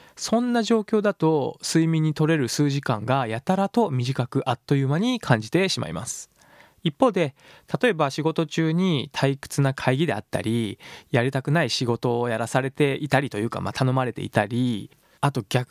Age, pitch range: 20-39, 120-165 Hz